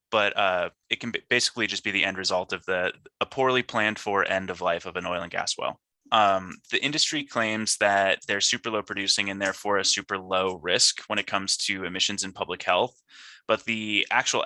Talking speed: 215 wpm